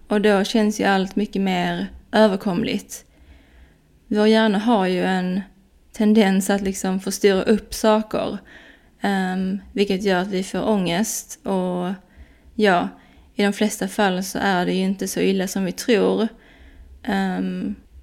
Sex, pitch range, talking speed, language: female, 185-215 Hz, 145 wpm, Swedish